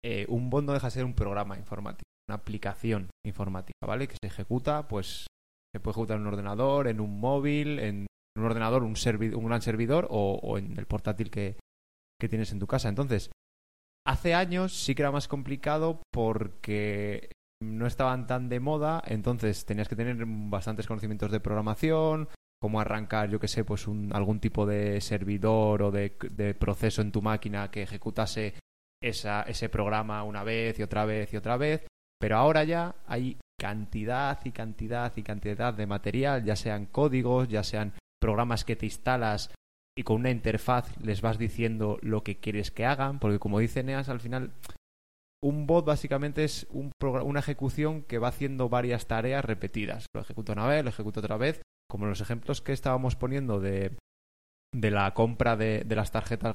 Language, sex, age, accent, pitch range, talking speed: Spanish, male, 20-39, Spanish, 105-130 Hz, 180 wpm